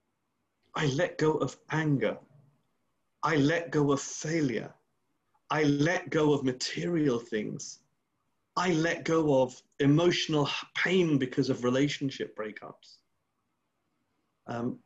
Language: English